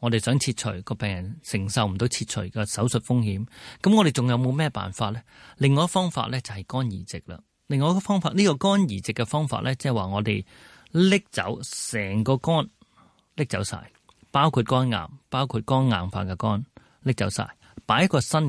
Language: Chinese